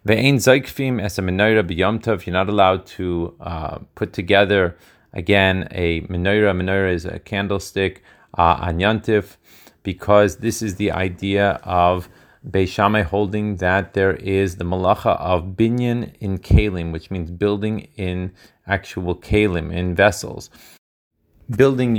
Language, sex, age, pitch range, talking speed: Hebrew, male, 30-49, 90-110 Hz, 130 wpm